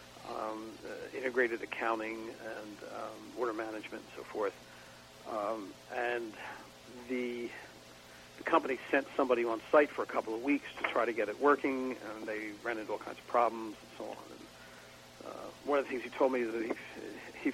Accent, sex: American, male